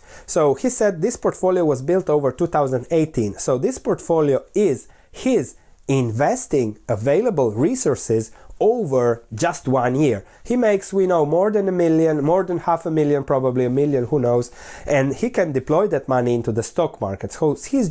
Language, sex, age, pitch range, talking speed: English, male, 30-49, 125-180 Hz, 170 wpm